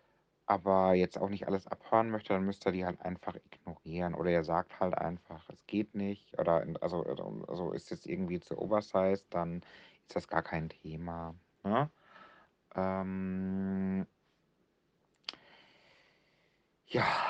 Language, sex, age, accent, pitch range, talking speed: German, male, 60-79, German, 90-105 Hz, 140 wpm